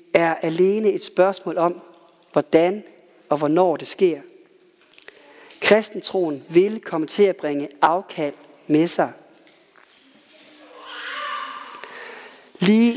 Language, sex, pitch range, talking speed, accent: Danish, male, 175-240 Hz, 95 wpm, native